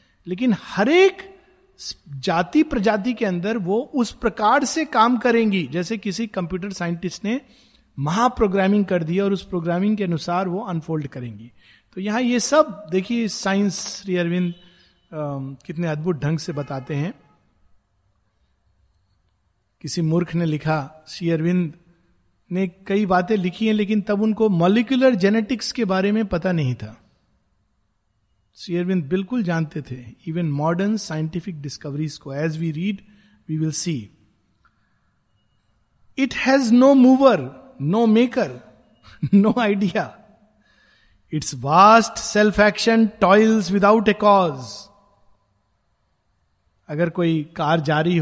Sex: male